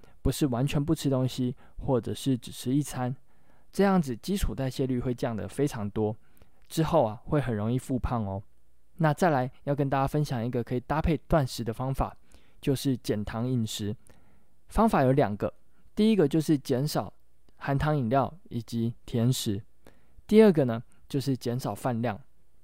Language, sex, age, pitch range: Chinese, male, 20-39, 115-145 Hz